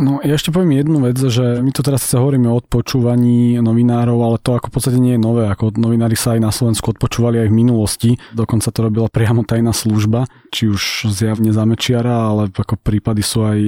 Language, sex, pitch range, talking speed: Slovak, male, 110-120 Hz, 210 wpm